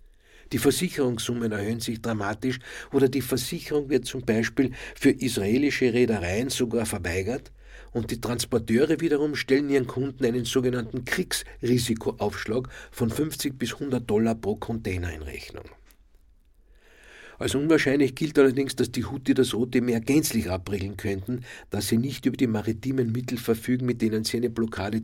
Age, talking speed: 60-79, 145 wpm